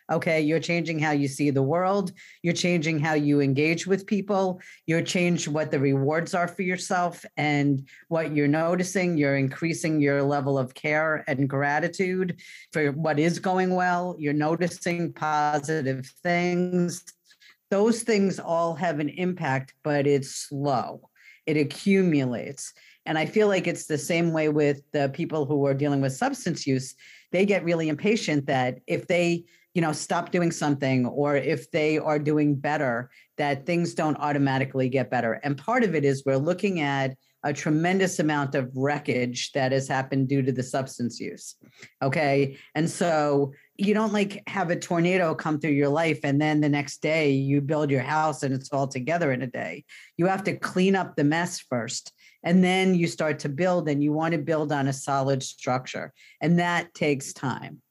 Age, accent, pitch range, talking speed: 40-59, American, 140-175 Hz, 180 wpm